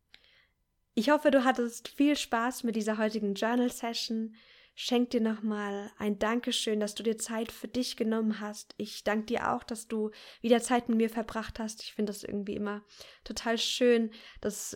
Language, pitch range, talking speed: German, 205-235 Hz, 175 wpm